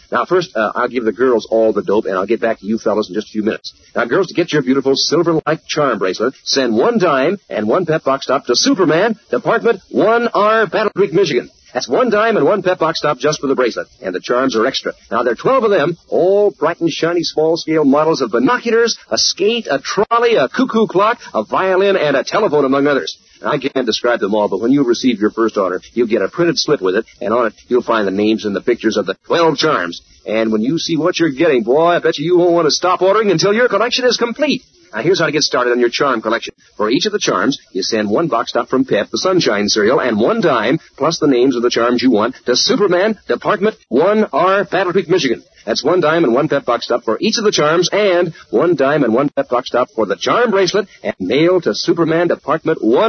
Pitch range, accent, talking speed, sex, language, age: 135-210 Hz, American, 250 wpm, male, English, 50-69